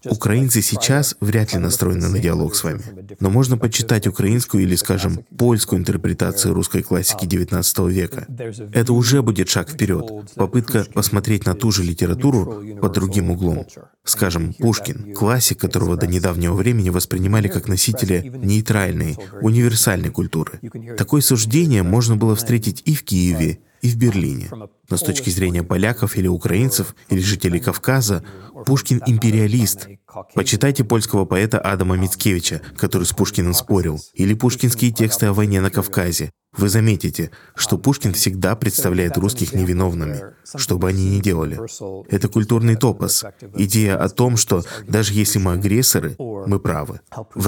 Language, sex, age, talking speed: Russian, male, 20-39, 145 wpm